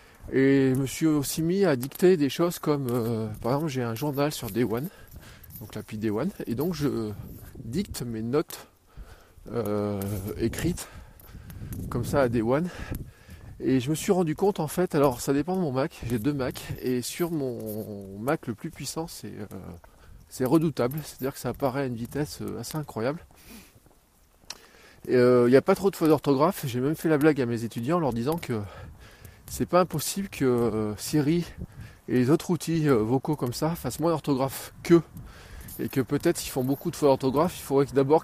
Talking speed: 195 wpm